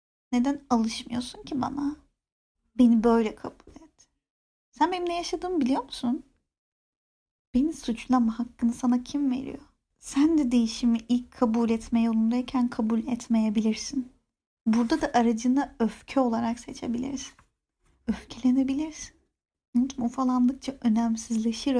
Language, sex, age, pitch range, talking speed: Turkish, female, 30-49, 230-265 Hz, 105 wpm